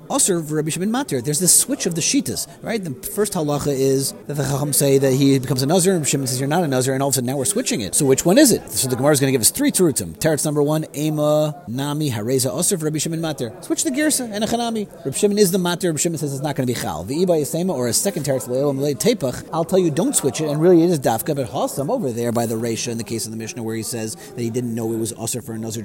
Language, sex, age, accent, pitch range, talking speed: English, male, 30-49, American, 130-165 Hz, 295 wpm